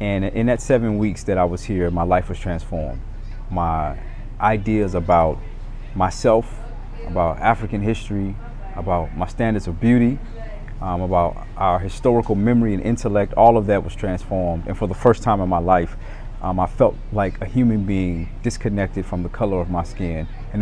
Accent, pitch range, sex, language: American, 95-115 Hz, male, English